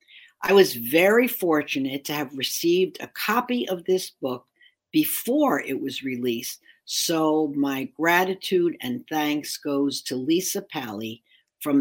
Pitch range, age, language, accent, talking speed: 150-220 Hz, 60-79, English, American, 130 wpm